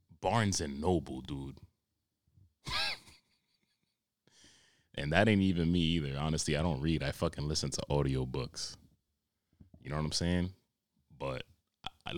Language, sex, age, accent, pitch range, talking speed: English, male, 20-39, American, 75-95 Hz, 130 wpm